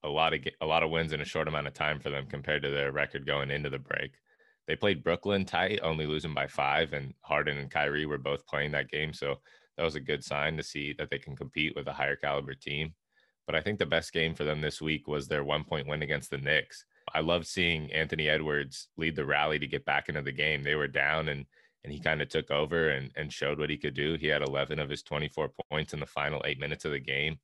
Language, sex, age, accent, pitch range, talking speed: English, male, 20-39, American, 75-80 Hz, 260 wpm